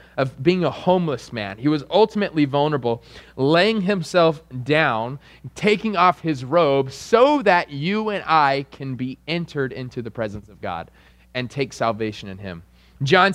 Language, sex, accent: English, male, American